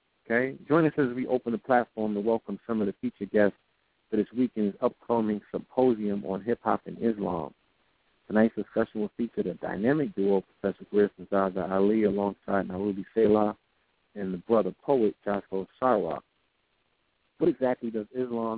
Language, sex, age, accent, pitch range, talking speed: English, male, 50-69, American, 105-135 Hz, 160 wpm